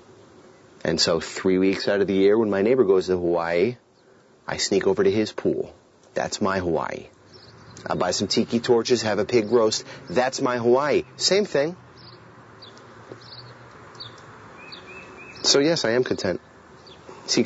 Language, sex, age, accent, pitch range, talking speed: English, male, 30-49, American, 105-130 Hz, 150 wpm